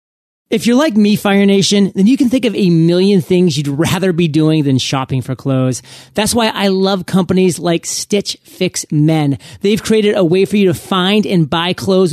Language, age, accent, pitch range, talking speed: English, 30-49, American, 165-200 Hz, 210 wpm